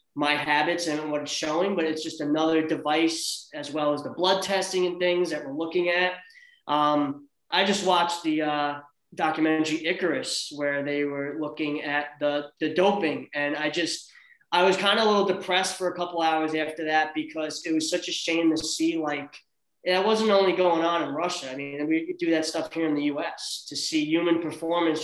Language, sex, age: English, male, 20-39